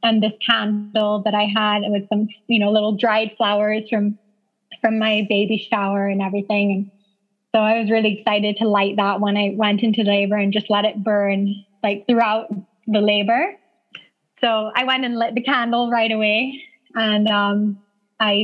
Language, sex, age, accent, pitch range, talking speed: English, female, 20-39, American, 210-235 Hz, 180 wpm